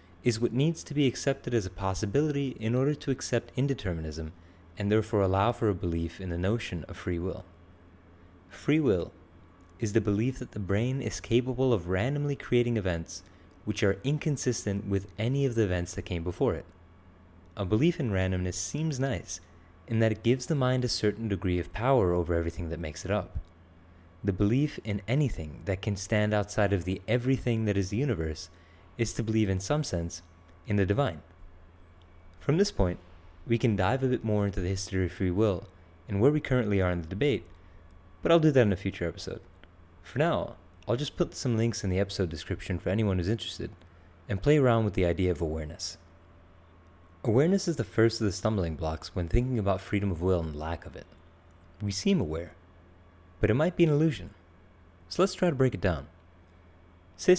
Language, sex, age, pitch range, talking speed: English, male, 30-49, 85-115 Hz, 195 wpm